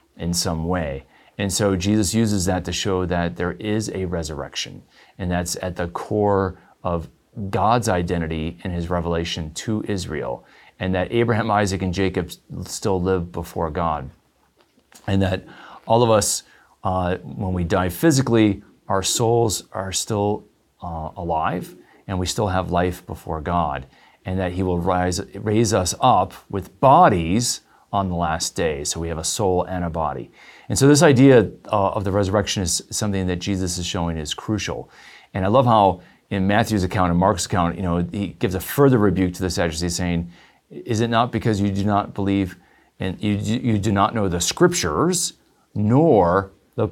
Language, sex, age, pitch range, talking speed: English, male, 30-49, 85-105 Hz, 175 wpm